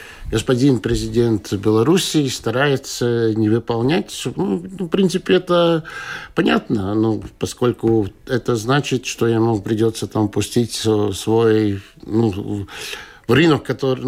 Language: Russian